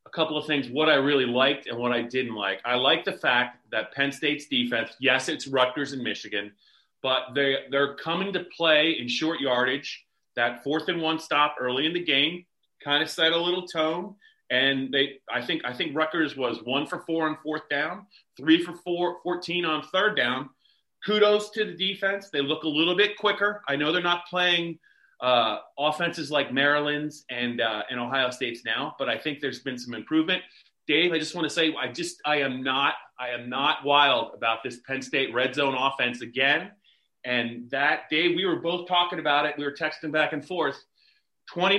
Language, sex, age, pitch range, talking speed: English, male, 30-49, 135-175 Hz, 205 wpm